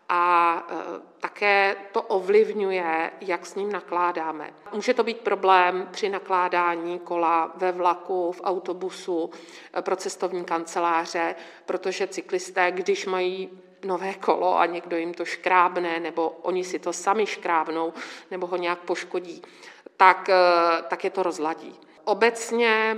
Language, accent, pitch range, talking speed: Czech, native, 170-190 Hz, 130 wpm